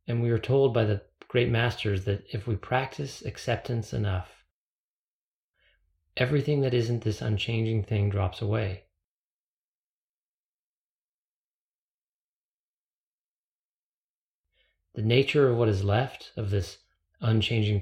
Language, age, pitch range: English, 30-49, 95-120 Hz